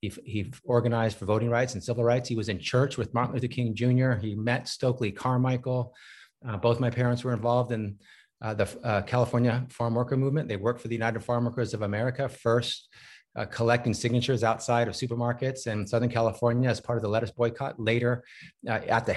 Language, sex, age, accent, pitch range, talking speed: English, male, 30-49, American, 105-125 Hz, 205 wpm